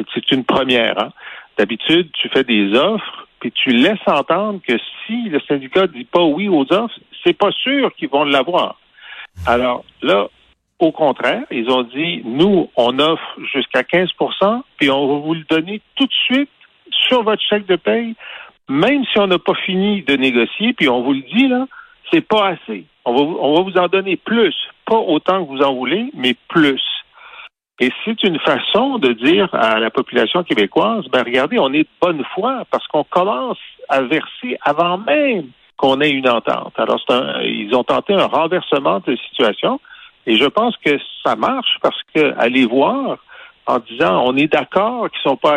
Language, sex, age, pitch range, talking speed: French, male, 50-69, 140-225 Hz, 195 wpm